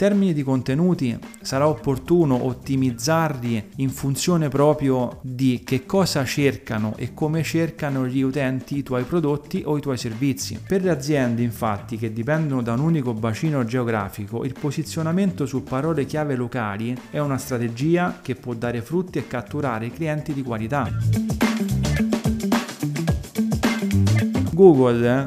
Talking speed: 135 wpm